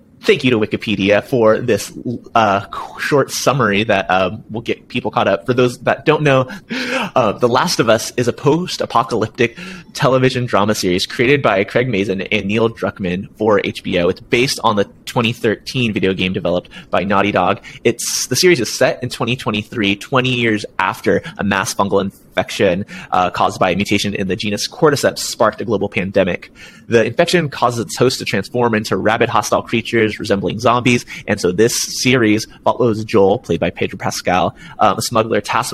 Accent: American